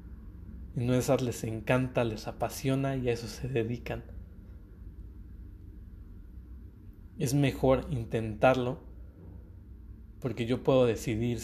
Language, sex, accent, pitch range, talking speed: Spanish, male, Mexican, 80-130 Hz, 105 wpm